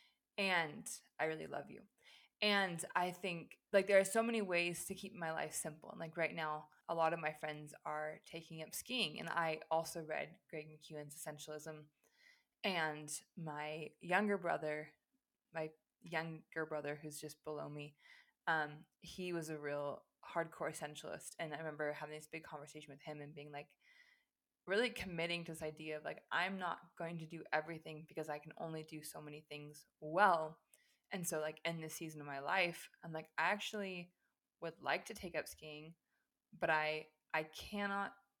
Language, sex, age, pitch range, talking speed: English, female, 20-39, 155-185 Hz, 180 wpm